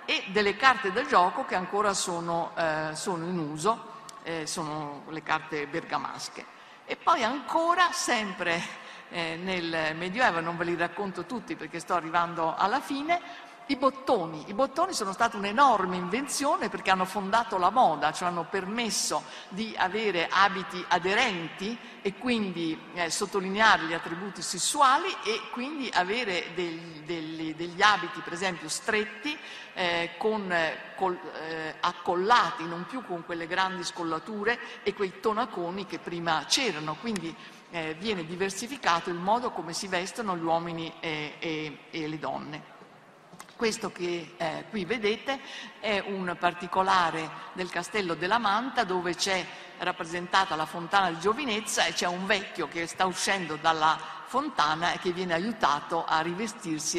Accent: native